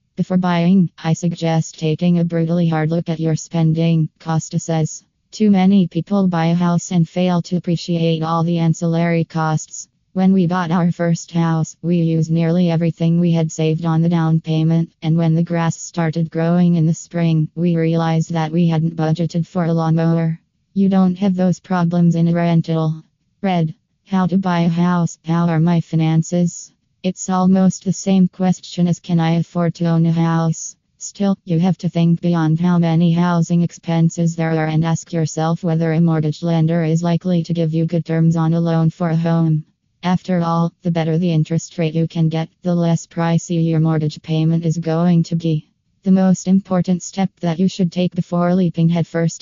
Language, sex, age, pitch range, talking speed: English, female, 20-39, 160-175 Hz, 190 wpm